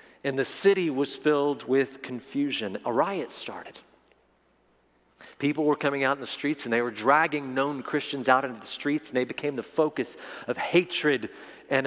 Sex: male